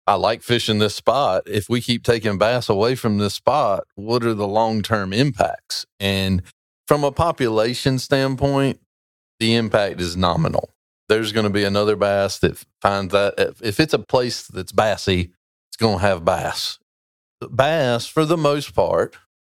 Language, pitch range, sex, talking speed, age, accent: English, 95-120 Hz, male, 165 wpm, 40-59, American